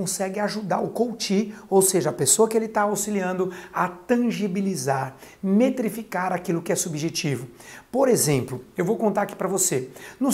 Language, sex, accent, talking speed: Portuguese, male, Brazilian, 165 wpm